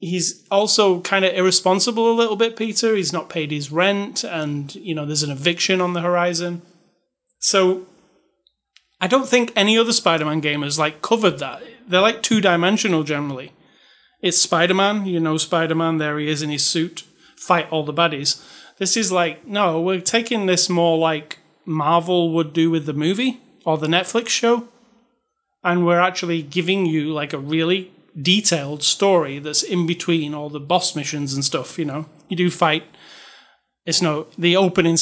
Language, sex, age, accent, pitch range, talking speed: English, male, 30-49, British, 160-190 Hz, 170 wpm